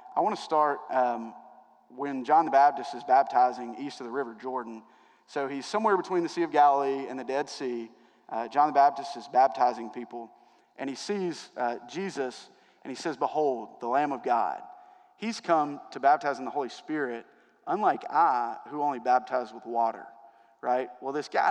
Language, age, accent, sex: English, 30-49, American, male